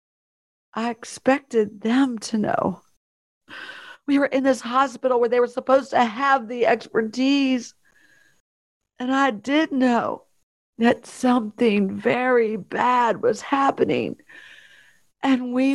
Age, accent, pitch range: 50-69, American, 230-270 Hz